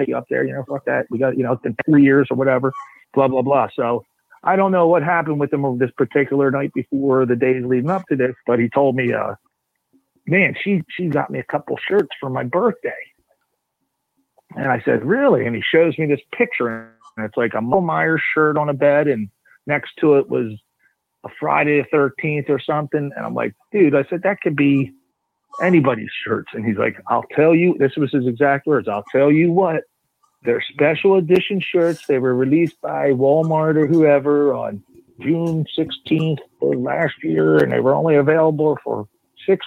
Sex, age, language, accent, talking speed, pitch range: male, 40-59, English, American, 205 wpm, 130-170 Hz